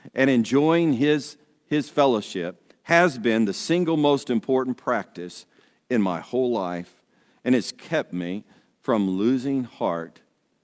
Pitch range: 120-180 Hz